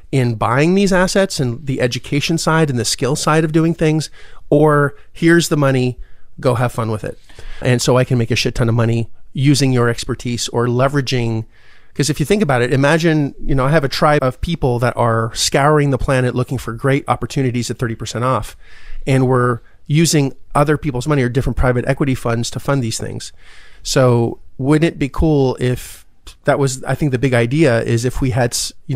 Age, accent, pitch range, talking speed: 30-49, American, 120-140 Hz, 210 wpm